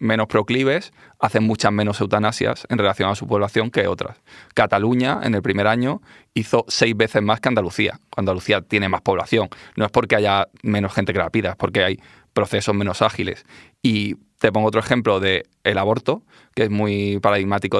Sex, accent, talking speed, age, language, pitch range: male, Spanish, 180 wpm, 20-39, Spanish, 100-110 Hz